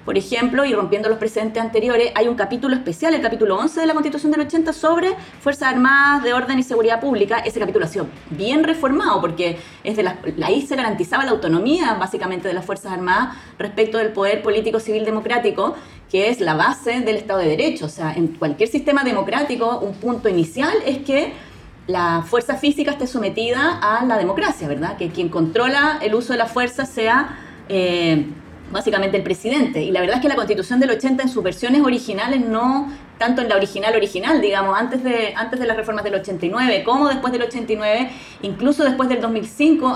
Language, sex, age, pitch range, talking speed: Spanish, female, 20-39, 195-265 Hz, 195 wpm